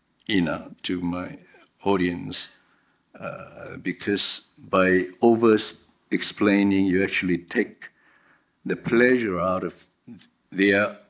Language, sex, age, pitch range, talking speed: English, male, 60-79, 95-120 Hz, 85 wpm